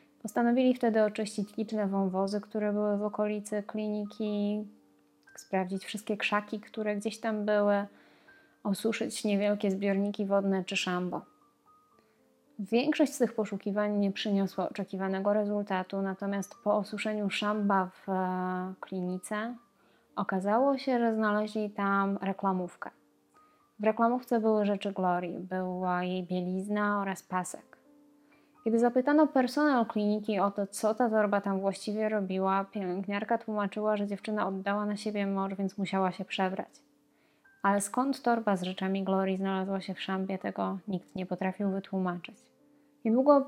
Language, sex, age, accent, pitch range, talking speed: Polish, female, 20-39, native, 195-220 Hz, 130 wpm